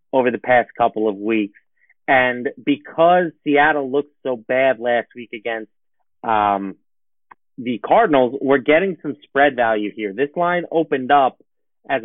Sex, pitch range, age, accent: male, 120-145 Hz, 30-49, American